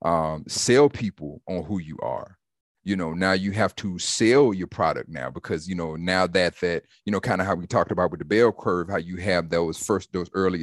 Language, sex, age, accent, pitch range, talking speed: English, male, 40-59, American, 85-100 Hz, 235 wpm